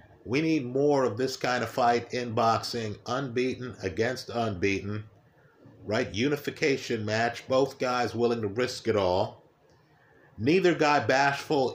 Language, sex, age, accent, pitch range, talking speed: English, male, 50-69, American, 115-140 Hz, 135 wpm